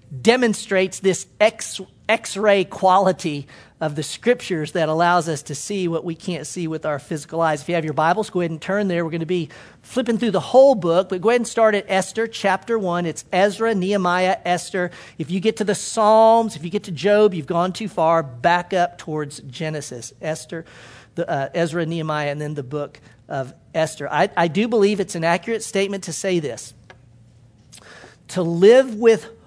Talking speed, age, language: 200 wpm, 50-69, English